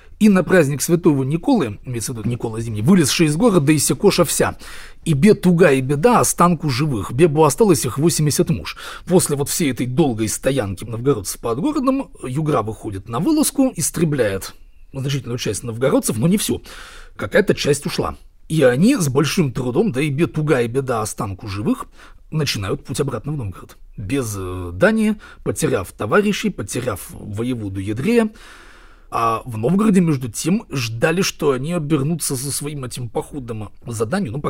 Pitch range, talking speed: 115-170 Hz, 160 wpm